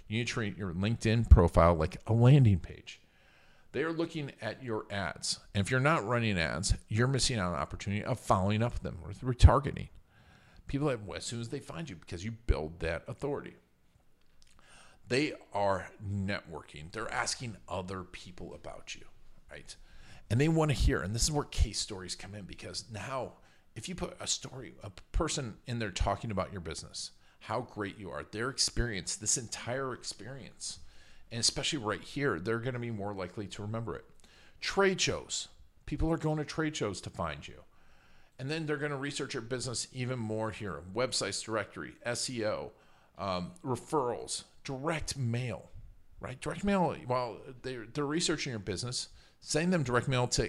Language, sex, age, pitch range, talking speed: English, male, 40-59, 95-130 Hz, 180 wpm